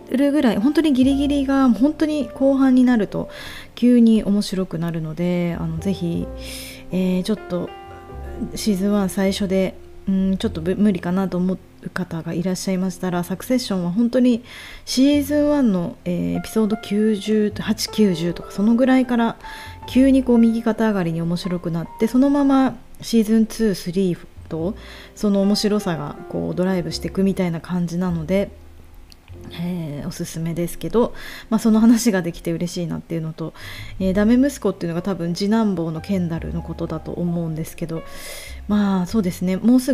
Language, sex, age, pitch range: Japanese, female, 20-39, 170-225 Hz